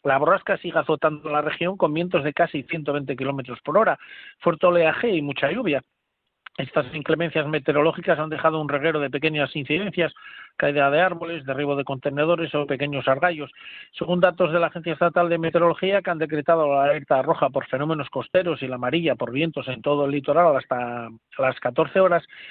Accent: Spanish